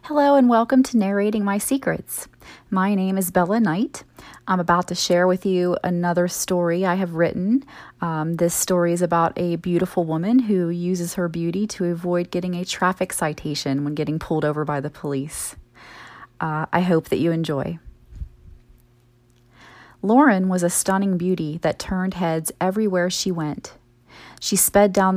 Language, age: English, 30-49